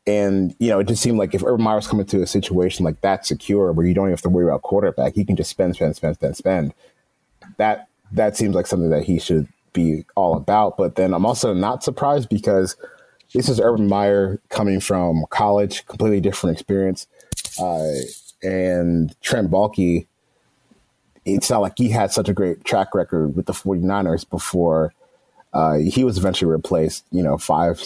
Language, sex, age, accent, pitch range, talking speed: English, male, 30-49, American, 90-110 Hz, 190 wpm